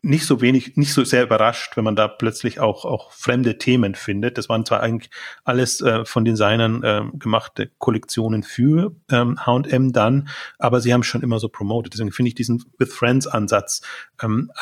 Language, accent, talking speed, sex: German, German, 195 wpm, male